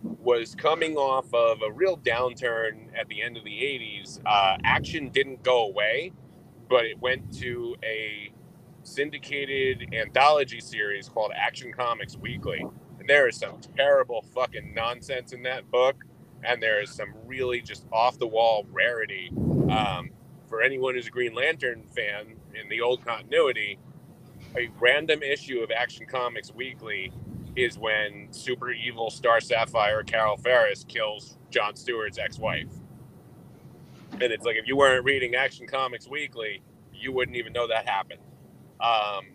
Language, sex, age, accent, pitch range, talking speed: English, male, 30-49, American, 120-140 Hz, 145 wpm